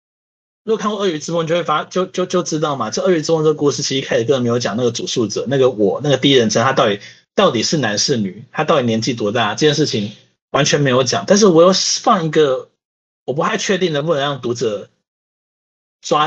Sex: male